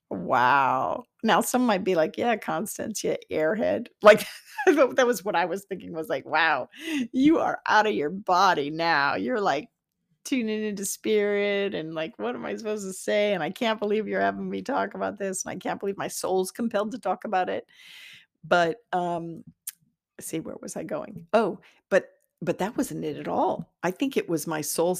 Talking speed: 200 wpm